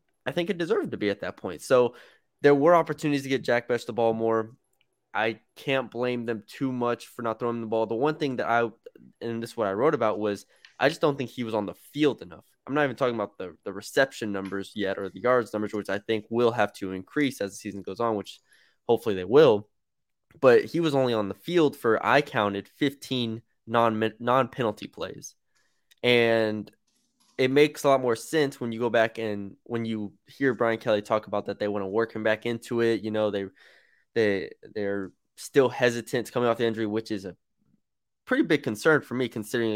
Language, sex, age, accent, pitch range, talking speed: English, male, 20-39, American, 105-125 Hz, 220 wpm